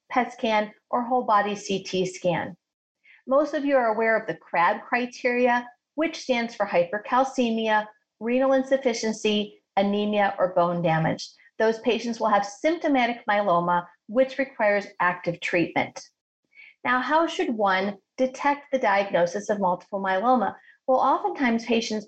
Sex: female